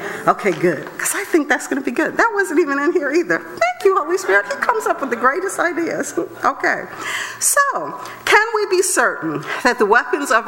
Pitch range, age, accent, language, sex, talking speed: 195-310 Hz, 50-69, American, English, female, 210 wpm